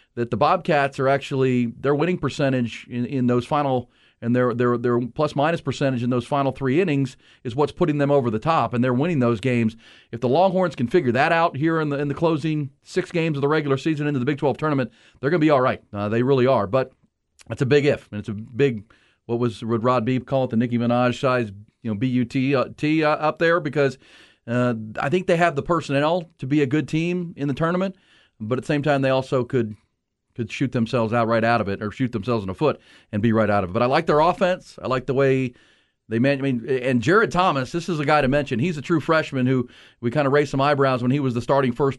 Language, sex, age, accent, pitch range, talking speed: English, male, 40-59, American, 120-150 Hz, 255 wpm